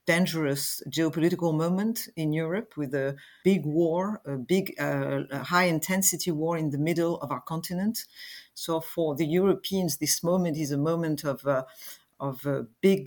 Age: 50-69